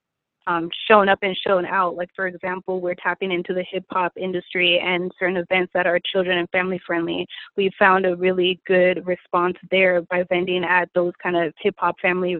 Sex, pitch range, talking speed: female, 180-195 Hz, 190 wpm